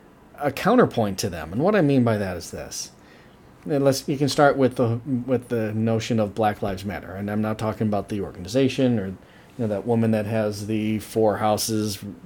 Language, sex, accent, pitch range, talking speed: English, male, American, 105-135 Hz, 205 wpm